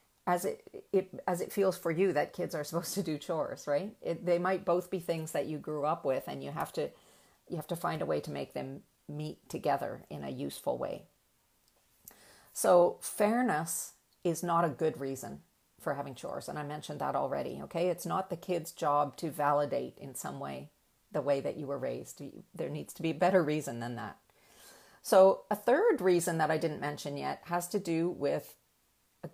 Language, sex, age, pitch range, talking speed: English, female, 40-59, 145-180 Hz, 205 wpm